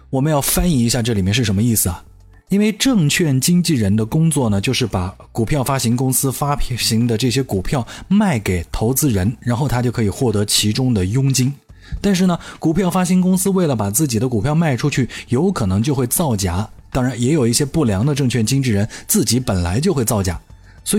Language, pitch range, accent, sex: Chinese, 105-145 Hz, native, male